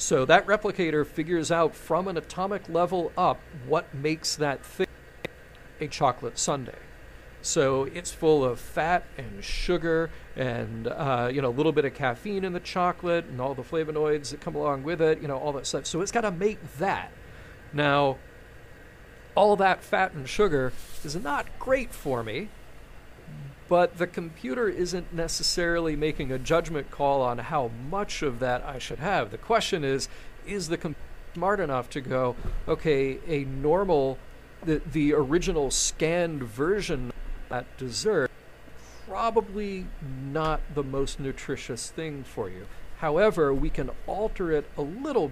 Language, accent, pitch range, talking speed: English, American, 135-170 Hz, 160 wpm